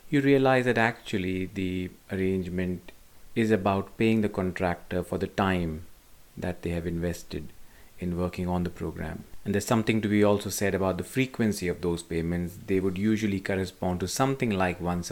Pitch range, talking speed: 90-110 Hz, 175 wpm